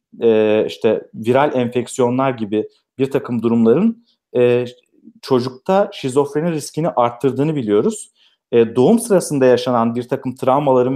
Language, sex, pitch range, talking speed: Turkish, male, 120-165 Hz, 115 wpm